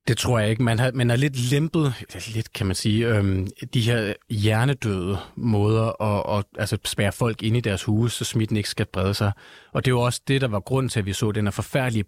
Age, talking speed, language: 30-49, 245 wpm, Danish